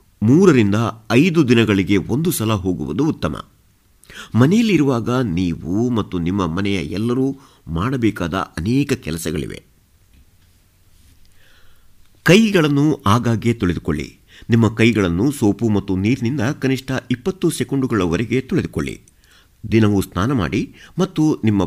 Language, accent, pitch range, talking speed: Kannada, native, 90-125 Hz, 90 wpm